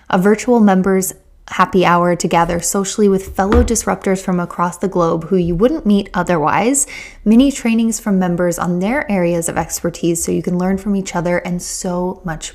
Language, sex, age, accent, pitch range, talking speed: English, female, 10-29, American, 170-210 Hz, 185 wpm